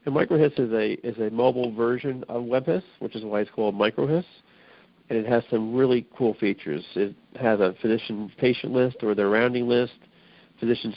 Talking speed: 185 wpm